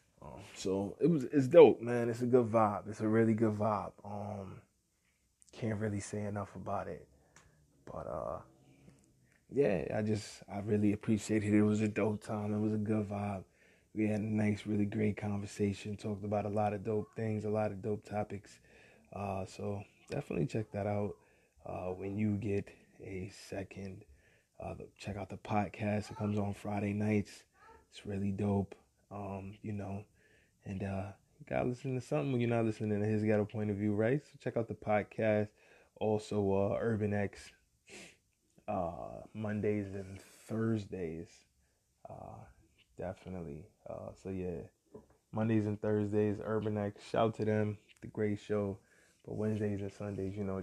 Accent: American